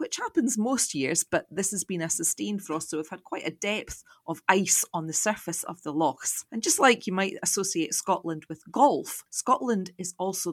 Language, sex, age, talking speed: English, female, 30-49, 210 wpm